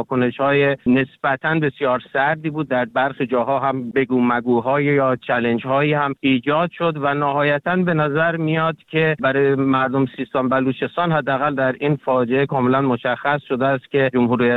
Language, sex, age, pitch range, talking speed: Persian, male, 50-69, 135-165 Hz, 155 wpm